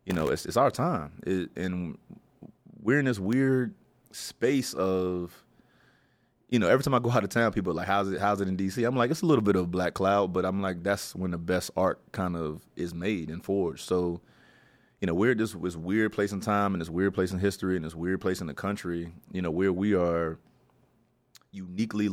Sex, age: male, 30-49